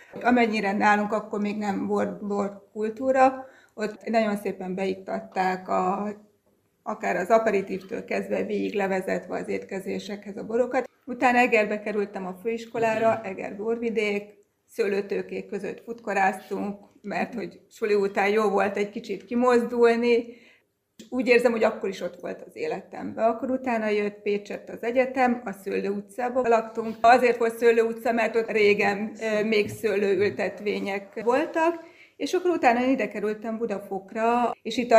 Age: 30-49